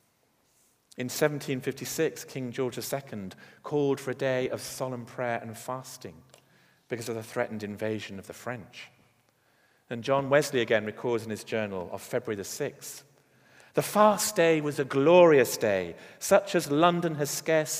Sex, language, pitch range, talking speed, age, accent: male, English, 110-145 Hz, 155 wpm, 40-59, British